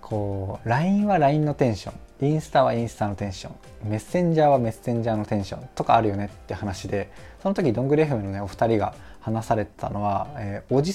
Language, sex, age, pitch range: Japanese, male, 20-39, 105-175 Hz